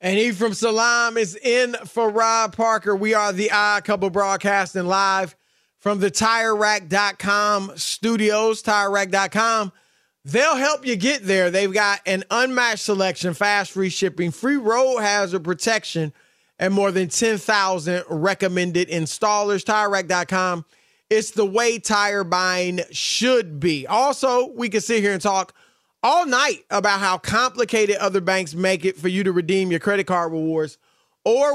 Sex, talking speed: male, 145 wpm